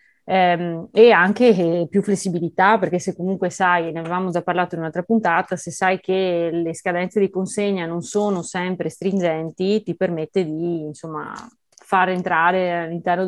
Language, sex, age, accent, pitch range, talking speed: Italian, female, 30-49, native, 165-205 Hz, 160 wpm